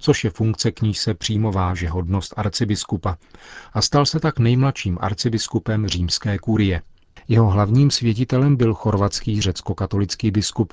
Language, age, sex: Czech, 40-59, male